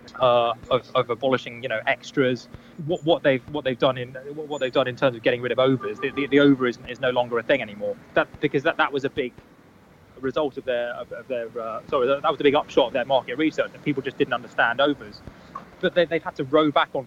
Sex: male